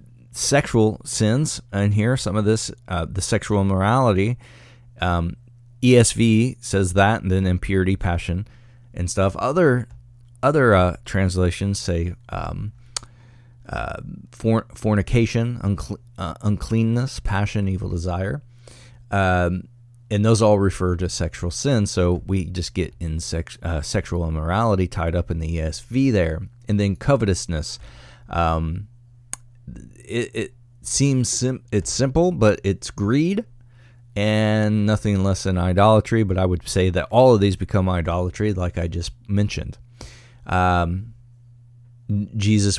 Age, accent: 30-49, American